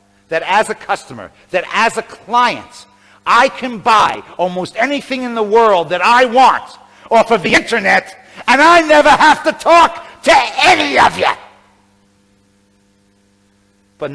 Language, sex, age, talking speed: Hebrew, male, 50-69, 150 wpm